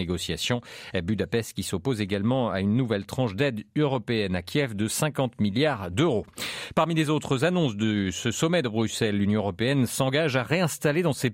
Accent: French